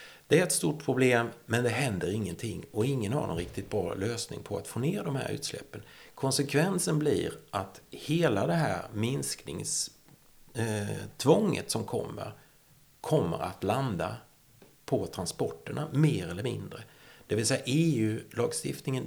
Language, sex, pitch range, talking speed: Swedish, male, 105-135 Hz, 140 wpm